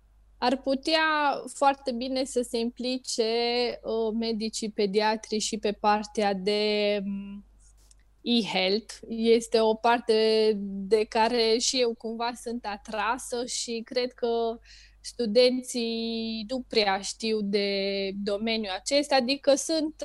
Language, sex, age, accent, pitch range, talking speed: Romanian, female, 20-39, native, 220-255 Hz, 115 wpm